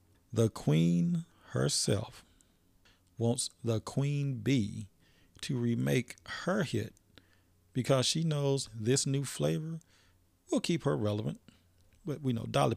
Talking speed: 115 wpm